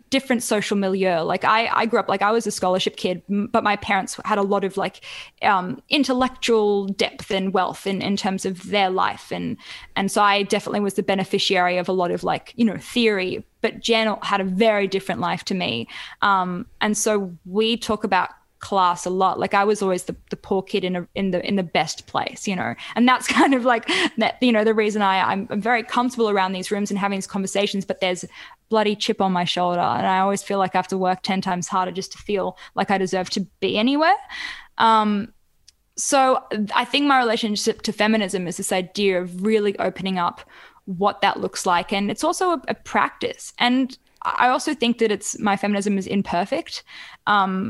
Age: 10-29